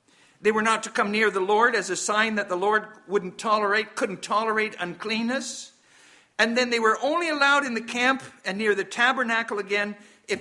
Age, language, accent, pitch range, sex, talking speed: 60-79, English, American, 170-225 Hz, male, 195 wpm